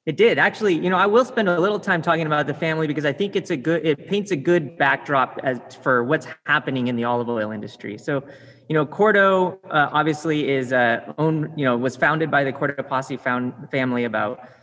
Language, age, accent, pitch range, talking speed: English, 30-49, American, 130-165 Hz, 220 wpm